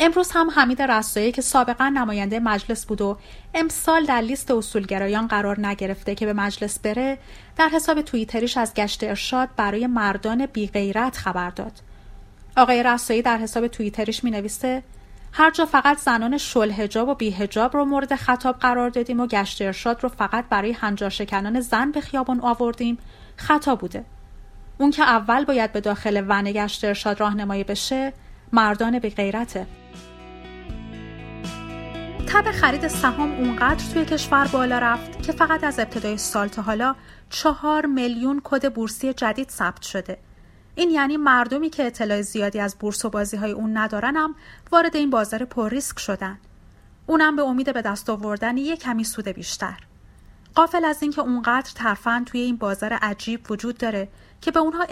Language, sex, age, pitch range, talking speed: Persian, female, 30-49, 205-265 Hz, 160 wpm